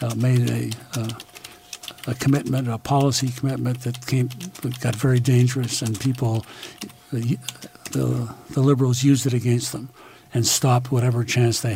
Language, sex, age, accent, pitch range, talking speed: English, male, 60-79, American, 120-140 Hz, 150 wpm